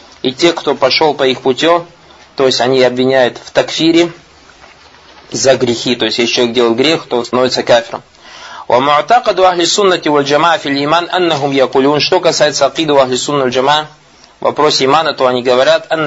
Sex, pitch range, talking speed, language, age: male, 125-160 Hz, 135 wpm, Russian, 20-39